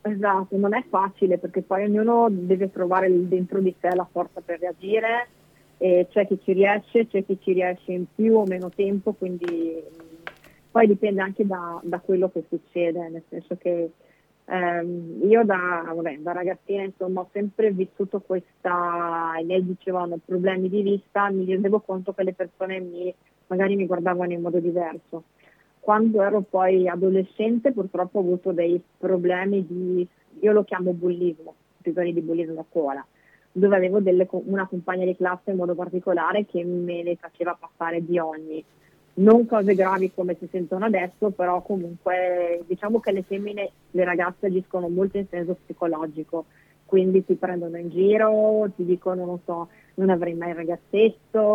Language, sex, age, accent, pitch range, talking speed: Italian, female, 30-49, native, 175-195 Hz, 165 wpm